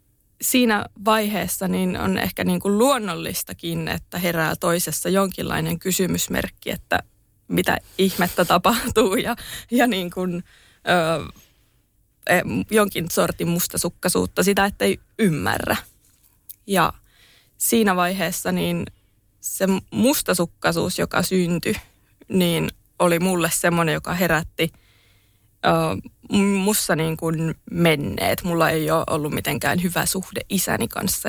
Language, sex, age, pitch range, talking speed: Finnish, female, 20-39, 160-190 Hz, 110 wpm